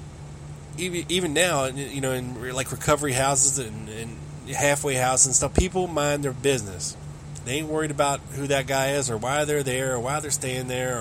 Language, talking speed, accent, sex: English, 185 wpm, American, male